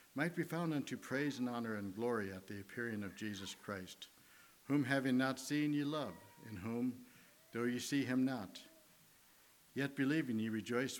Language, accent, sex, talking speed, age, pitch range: English, American, male, 175 wpm, 60-79, 105-130 Hz